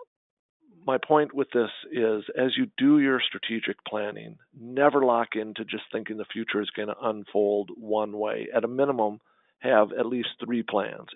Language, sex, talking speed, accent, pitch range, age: English, male, 170 wpm, American, 105-120 Hz, 50-69